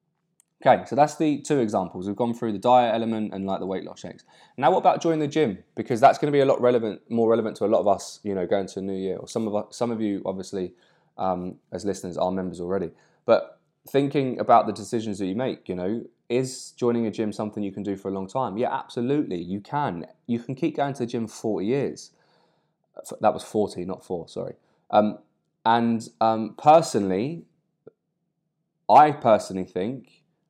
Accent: British